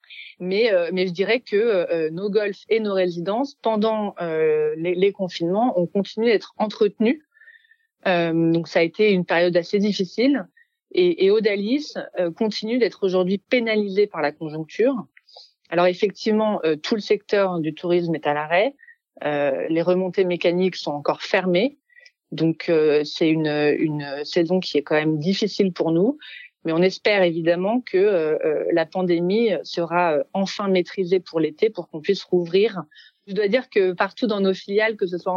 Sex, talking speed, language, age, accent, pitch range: female, 170 wpm, French, 30-49, French, 170-215 Hz